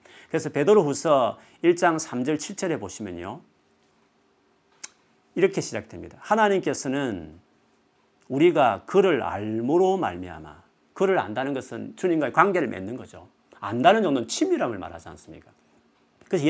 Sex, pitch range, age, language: male, 120-195 Hz, 40-59, Korean